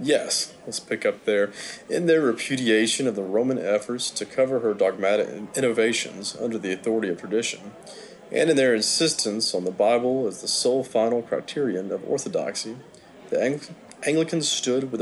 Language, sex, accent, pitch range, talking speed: English, male, American, 115-165 Hz, 160 wpm